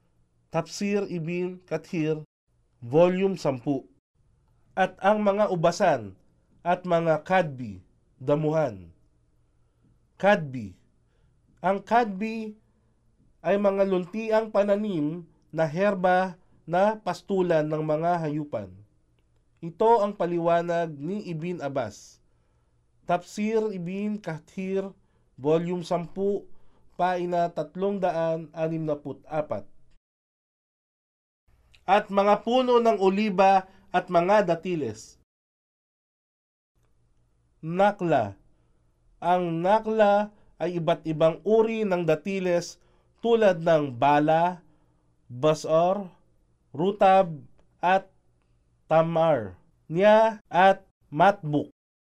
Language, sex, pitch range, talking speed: Filipino, male, 140-195 Hz, 80 wpm